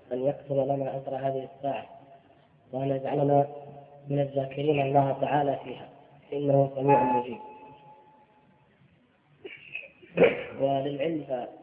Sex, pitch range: female, 140-160 Hz